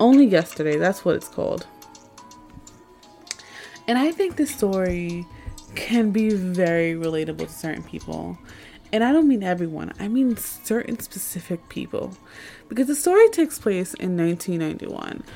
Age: 20-39